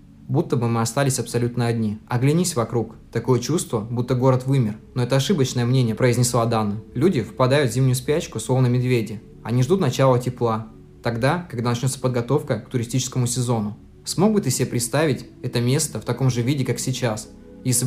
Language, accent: Russian, native